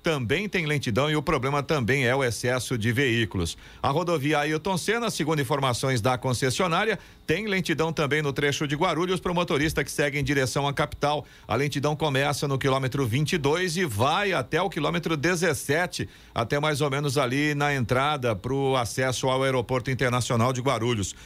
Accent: Brazilian